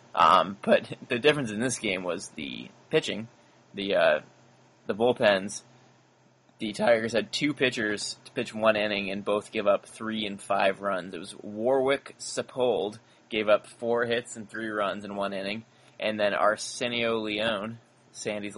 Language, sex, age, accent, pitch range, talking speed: English, male, 20-39, American, 105-115 Hz, 160 wpm